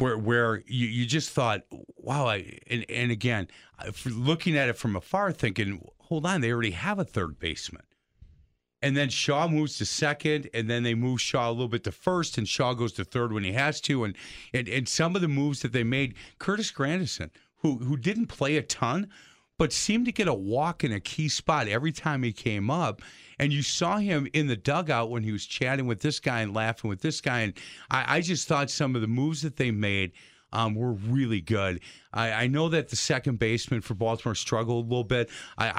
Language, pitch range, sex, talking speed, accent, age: English, 110-145 Hz, male, 220 wpm, American, 40-59